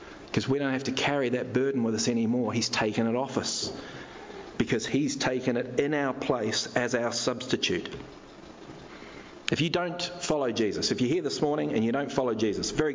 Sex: male